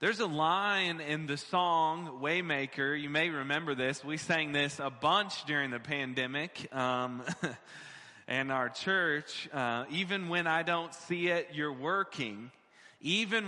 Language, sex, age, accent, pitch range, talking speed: English, male, 20-39, American, 135-170 Hz, 145 wpm